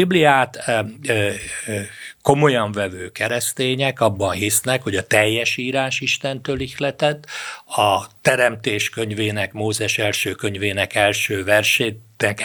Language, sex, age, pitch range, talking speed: Hungarian, male, 60-79, 105-125 Hz, 95 wpm